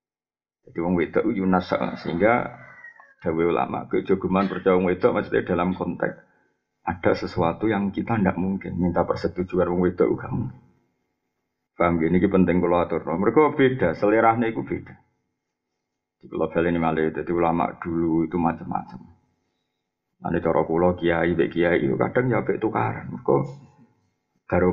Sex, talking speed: male, 130 wpm